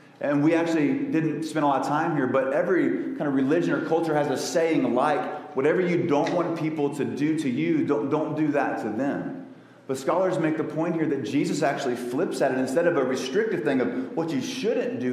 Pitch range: 140-170 Hz